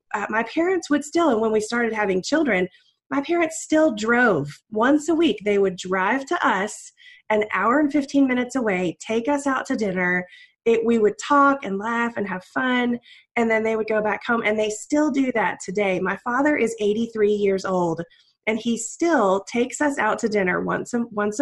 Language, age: English, 20-39